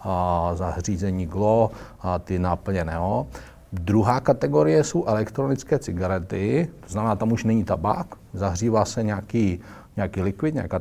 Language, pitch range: Czech, 95-115 Hz